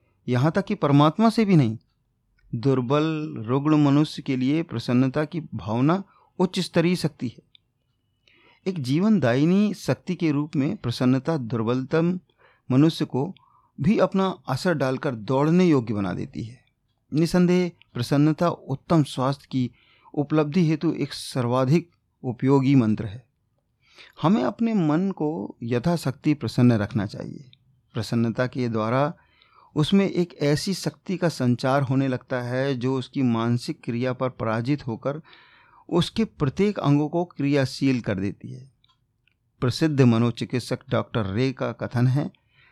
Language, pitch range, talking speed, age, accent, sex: Hindi, 125-160 Hz, 130 wpm, 40-59, native, male